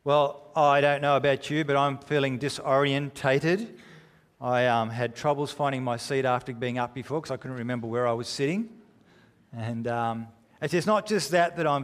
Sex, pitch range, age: male, 130-165 Hz, 40-59